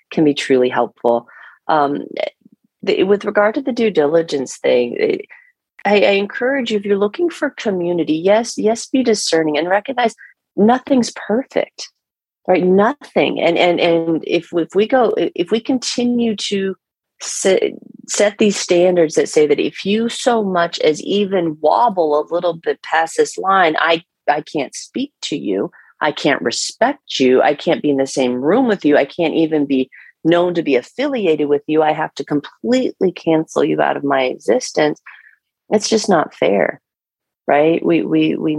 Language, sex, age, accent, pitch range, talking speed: English, female, 40-59, American, 155-245 Hz, 170 wpm